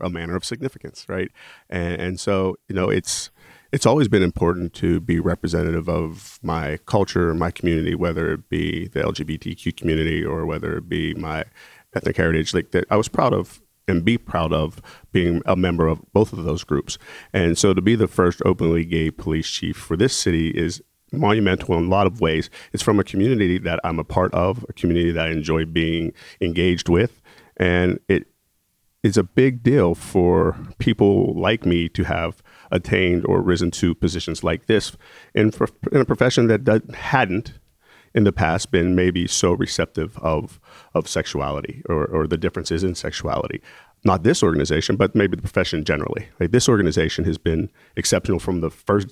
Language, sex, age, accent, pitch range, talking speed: English, male, 40-59, American, 85-100 Hz, 180 wpm